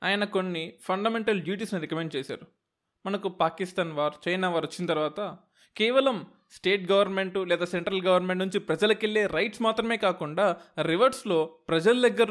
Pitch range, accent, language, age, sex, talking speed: 175-220 Hz, native, Telugu, 20-39, male, 135 wpm